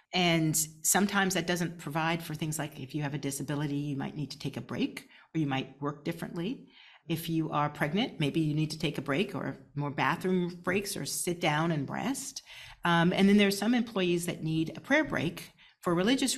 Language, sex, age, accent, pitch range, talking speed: English, female, 40-59, American, 140-180 Hz, 215 wpm